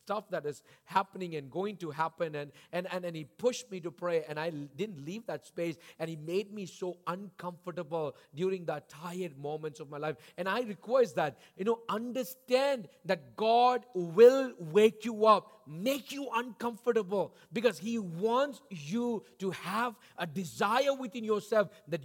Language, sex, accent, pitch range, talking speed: English, male, Indian, 165-205 Hz, 170 wpm